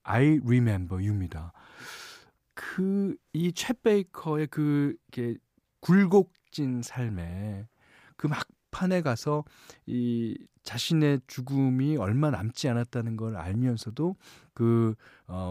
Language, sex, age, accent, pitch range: Korean, male, 40-59, native, 95-150 Hz